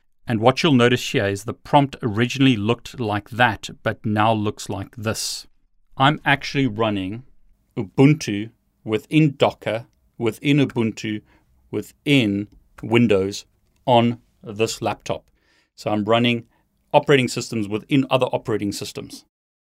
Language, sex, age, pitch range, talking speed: English, male, 40-59, 105-125 Hz, 120 wpm